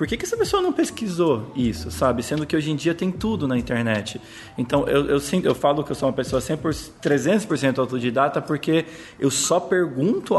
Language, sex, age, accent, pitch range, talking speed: Portuguese, male, 20-39, Brazilian, 125-170 Hz, 200 wpm